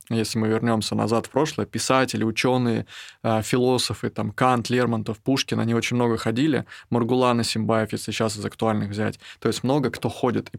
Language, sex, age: Russian, male, 20-39